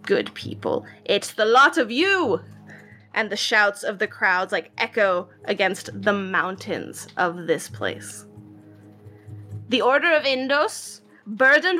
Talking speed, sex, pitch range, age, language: 130 wpm, female, 190-260 Hz, 20-39, English